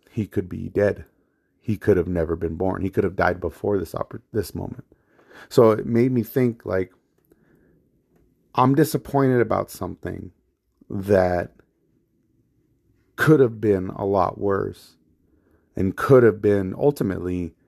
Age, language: 30-49, English